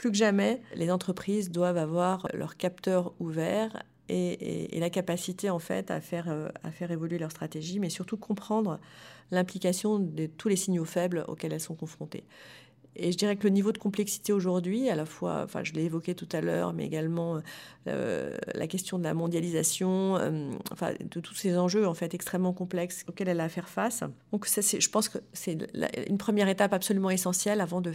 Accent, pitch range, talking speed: French, 165-205 Hz, 205 wpm